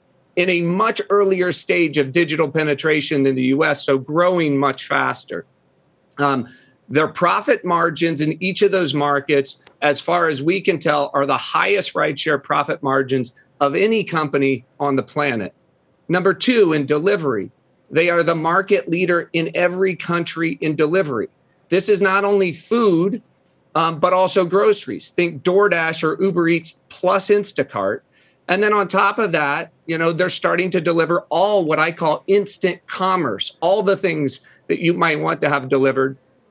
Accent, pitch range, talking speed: American, 145-185 Hz, 165 wpm